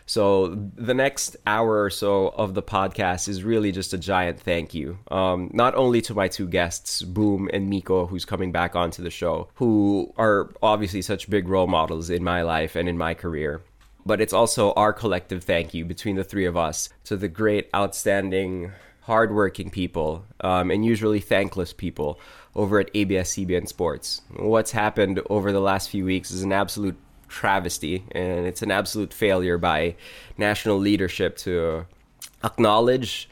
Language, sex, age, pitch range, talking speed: English, male, 20-39, 90-105 Hz, 170 wpm